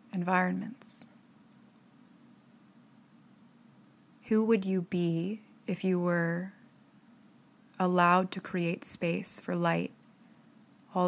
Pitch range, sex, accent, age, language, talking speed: 180-230 Hz, female, American, 20-39, English, 80 wpm